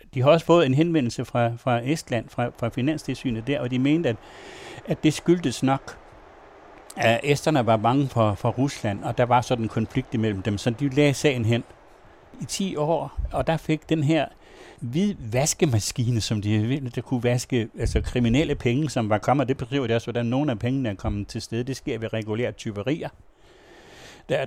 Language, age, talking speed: Danish, 60-79, 200 wpm